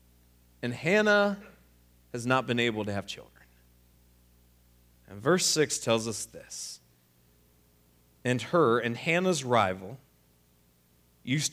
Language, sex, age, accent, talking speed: English, male, 30-49, American, 110 wpm